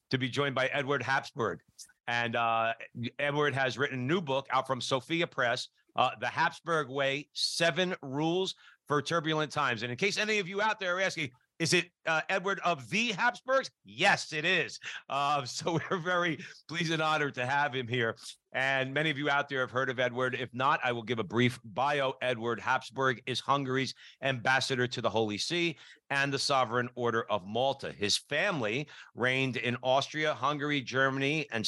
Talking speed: 190 wpm